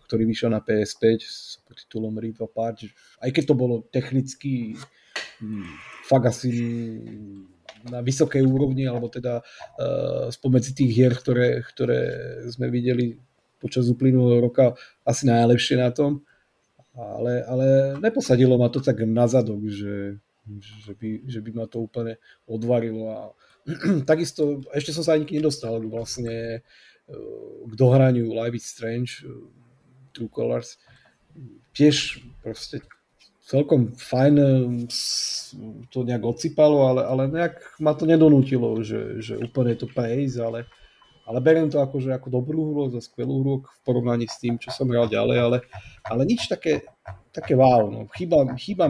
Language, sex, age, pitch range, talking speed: Slovak, male, 30-49, 115-135 Hz, 140 wpm